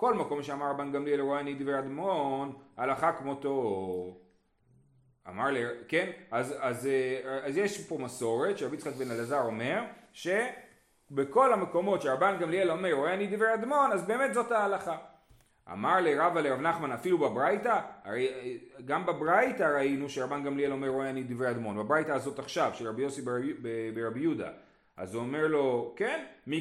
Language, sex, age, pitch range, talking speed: Hebrew, male, 30-49, 135-200 Hz, 130 wpm